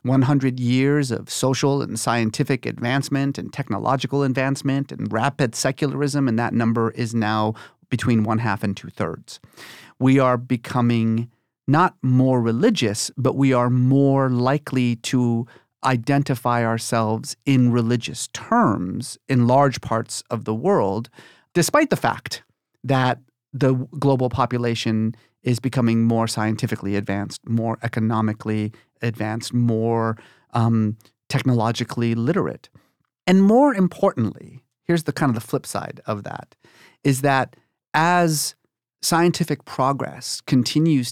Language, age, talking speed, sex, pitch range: English, 40-59, 120 wpm, male, 115-140 Hz